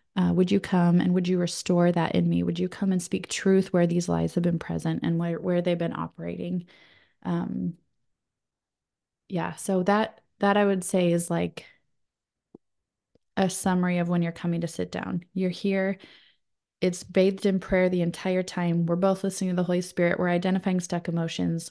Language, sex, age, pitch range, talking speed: English, female, 20-39, 175-195 Hz, 190 wpm